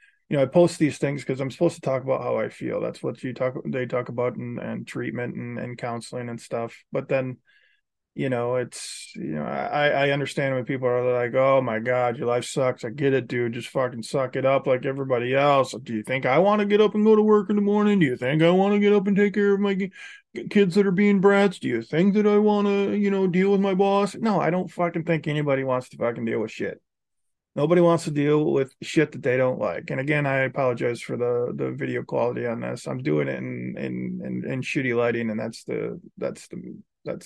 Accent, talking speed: American, 250 wpm